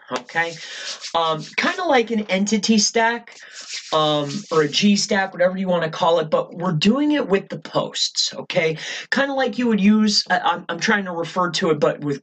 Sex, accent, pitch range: male, American, 155-215 Hz